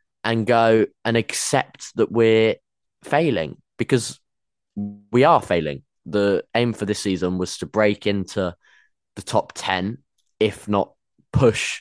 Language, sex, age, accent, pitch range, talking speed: English, male, 20-39, British, 90-115 Hz, 130 wpm